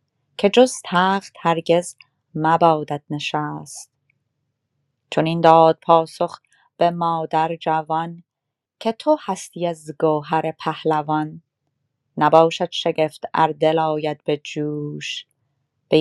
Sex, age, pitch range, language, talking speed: female, 30-49, 145-175 Hz, Persian, 100 wpm